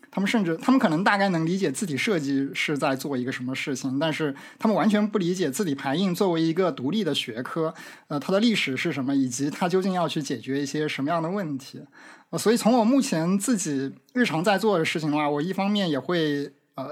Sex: male